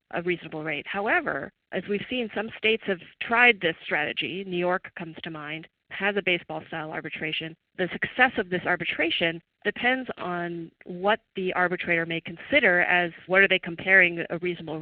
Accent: American